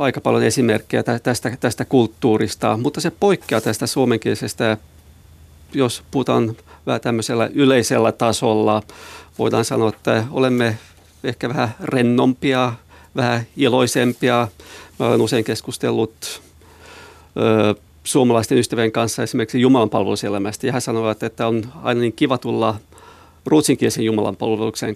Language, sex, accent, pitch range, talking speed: Finnish, male, native, 105-125 Hz, 115 wpm